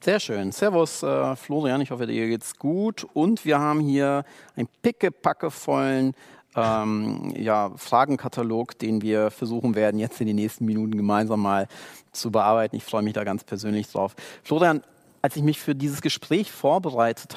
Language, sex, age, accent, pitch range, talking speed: German, male, 40-59, German, 115-140 Hz, 160 wpm